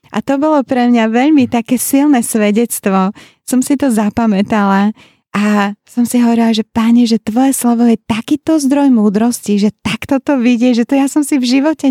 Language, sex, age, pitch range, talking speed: Slovak, female, 20-39, 215-245 Hz, 185 wpm